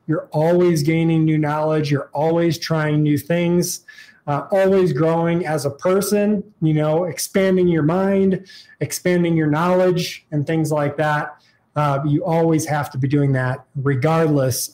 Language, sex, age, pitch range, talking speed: English, male, 20-39, 145-180 Hz, 150 wpm